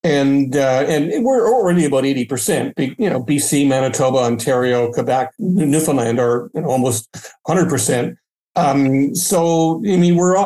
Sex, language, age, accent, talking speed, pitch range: male, English, 60-79, American, 130 wpm, 135-175 Hz